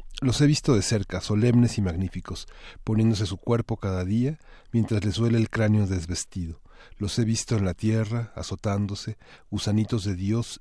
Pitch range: 90-110 Hz